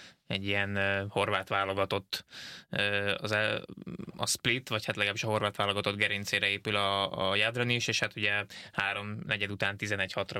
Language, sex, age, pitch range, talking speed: Hungarian, male, 20-39, 100-110 Hz, 165 wpm